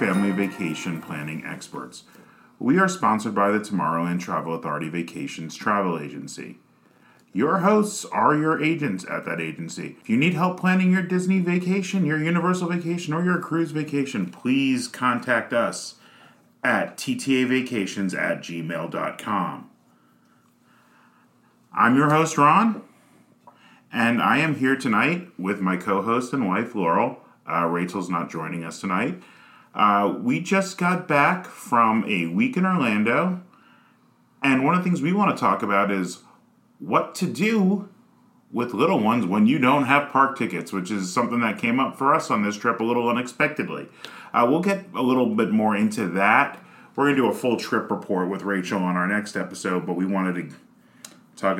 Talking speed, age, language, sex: 165 wpm, 30-49, English, male